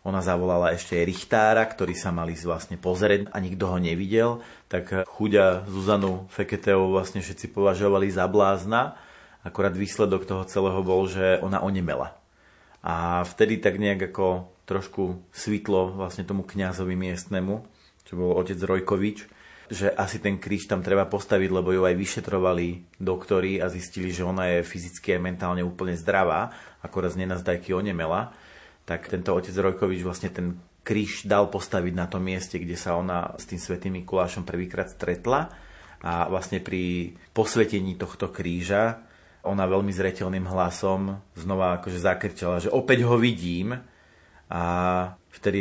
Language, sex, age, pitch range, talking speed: Slovak, male, 30-49, 90-100 Hz, 145 wpm